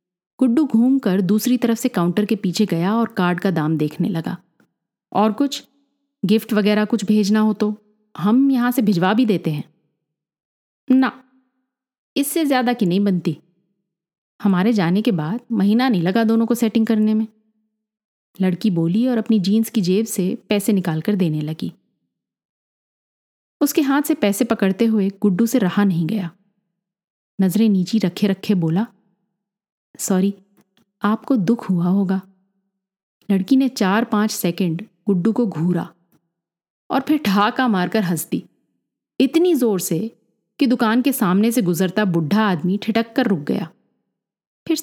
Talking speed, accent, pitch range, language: 150 wpm, native, 190-230 Hz, Hindi